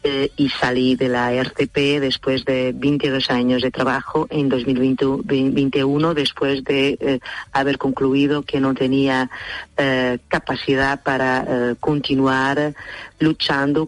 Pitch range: 130-145 Hz